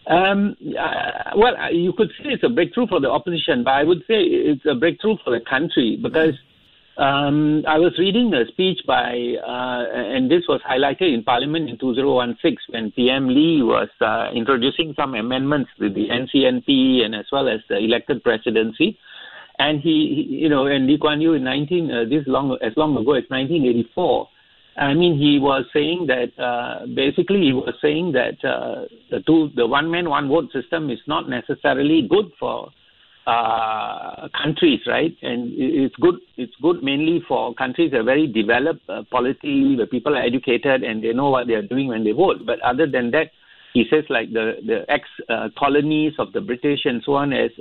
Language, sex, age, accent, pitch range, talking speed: English, male, 60-79, Indian, 130-175 Hz, 185 wpm